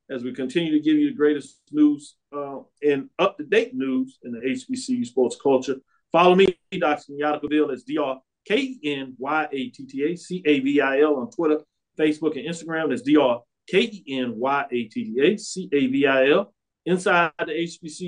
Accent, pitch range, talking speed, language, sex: American, 135-180 Hz, 155 wpm, English, male